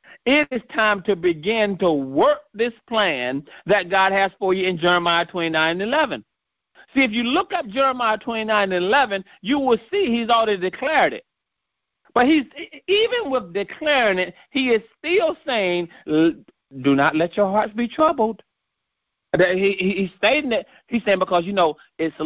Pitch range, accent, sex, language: 160-235 Hz, American, male, English